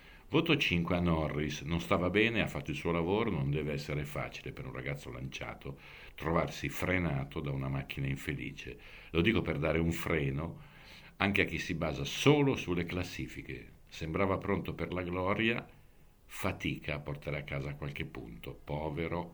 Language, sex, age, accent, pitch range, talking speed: Italian, male, 50-69, native, 70-90 Hz, 165 wpm